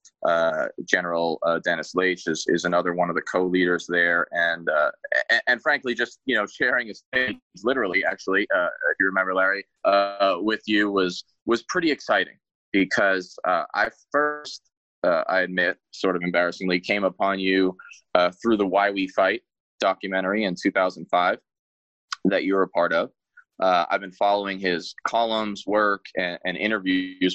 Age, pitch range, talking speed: 20-39, 90-105 Hz, 170 wpm